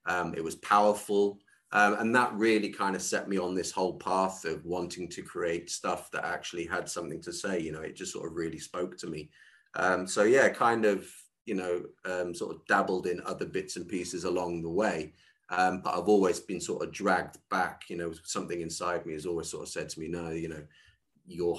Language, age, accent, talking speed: English, 30-49, British, 225 wpm